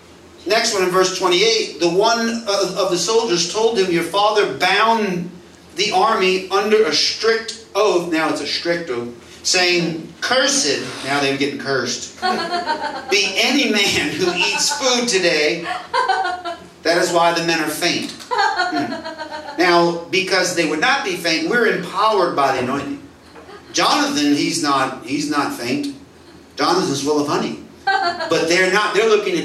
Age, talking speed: 40-59, 155 wpm